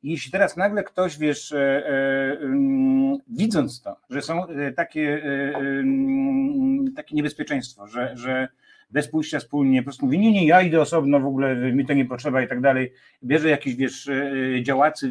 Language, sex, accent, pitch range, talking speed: Polish, male, native, 135-175 Hz, 170 wpm